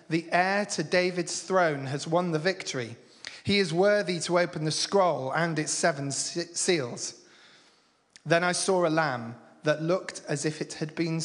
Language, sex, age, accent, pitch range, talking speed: English, male, 30-49, British, 135-165 Hz, 170 wpm